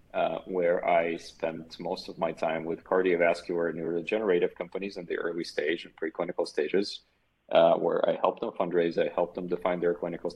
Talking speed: 185 wpm